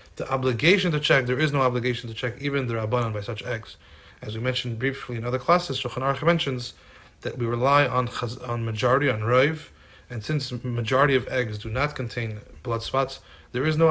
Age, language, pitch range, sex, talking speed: 30-49, English, 115-140 Hz, male, 210 wpm